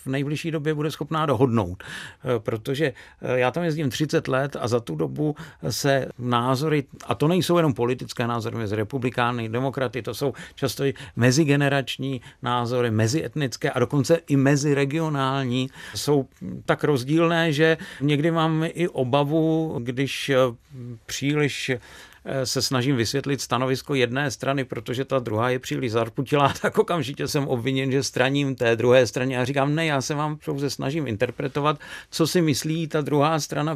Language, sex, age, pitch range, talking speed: Czech, male, 50-69, 130-155 Hz, 150 wpm